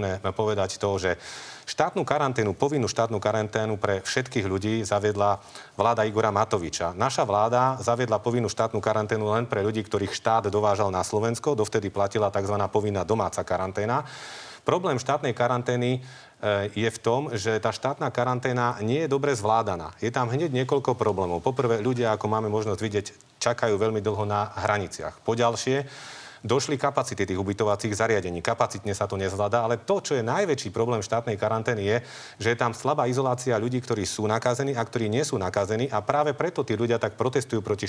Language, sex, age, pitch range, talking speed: Slovak, male, 30-49, 105-120 Hz, 170 wpm